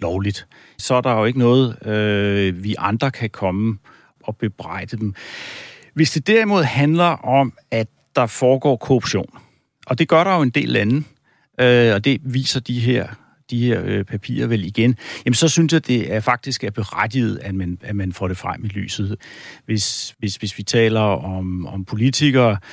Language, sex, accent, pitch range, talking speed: Danish, male, native, 100-125 Hz, 185 wpm